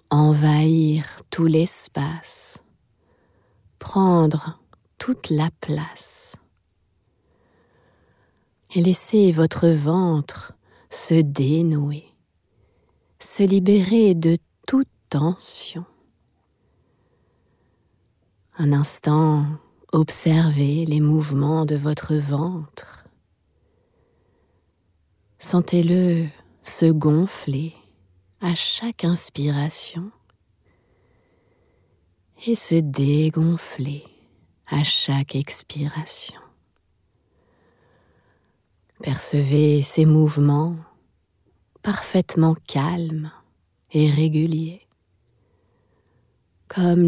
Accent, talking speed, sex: French, 60 wpm, female